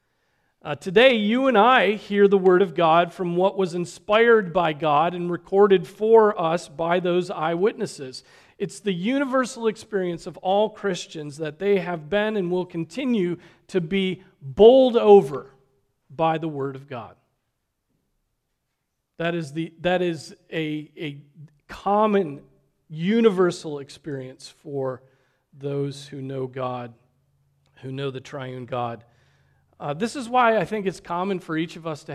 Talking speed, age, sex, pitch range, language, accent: 145 wpm, 40-59, male, 135-180 Hz, English, American